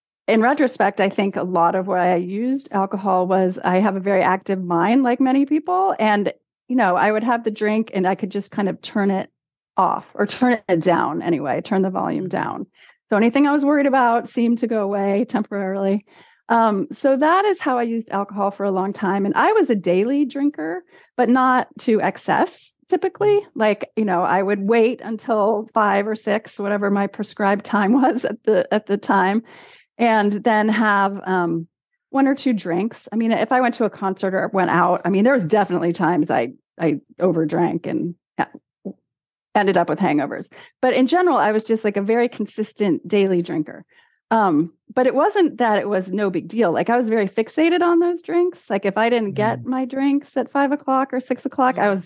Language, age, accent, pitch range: English, 30-49, American, 195-255 Hz